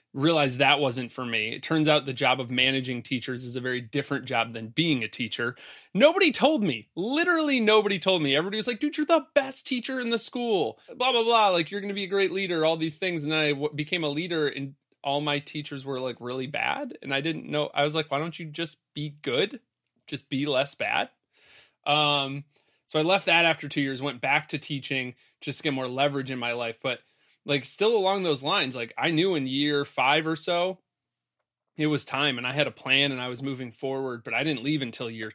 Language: English